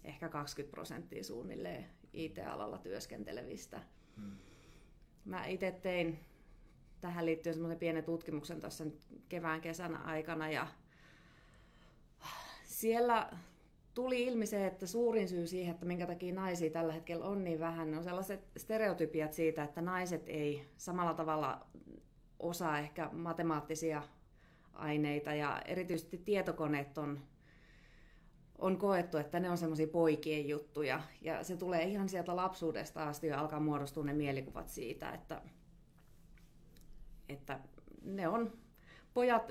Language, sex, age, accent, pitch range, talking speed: Finnish, female, 30-49, native, 155-180 Hz, 115 wpm